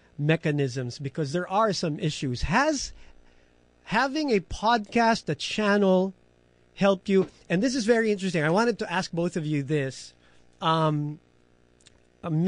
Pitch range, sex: 145-180 Hz, male